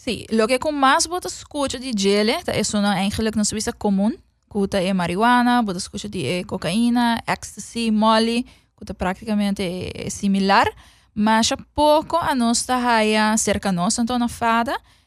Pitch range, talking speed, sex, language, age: 200-235 Hz, 165 wpm, female, English, 20-39